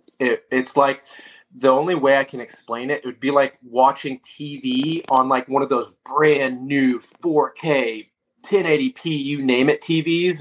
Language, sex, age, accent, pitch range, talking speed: English, male, 30-49, American, 115-145 Hz, 165 wpm